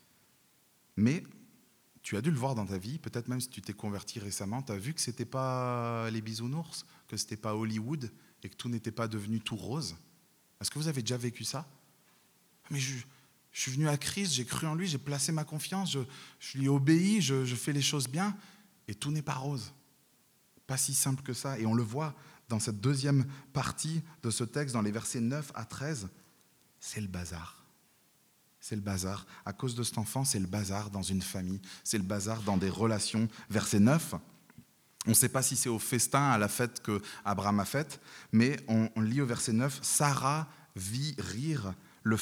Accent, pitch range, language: French, 110-145 Hz, French